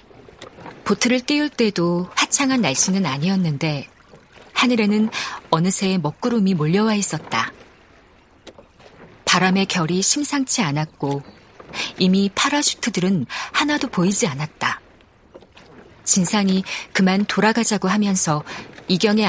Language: Korean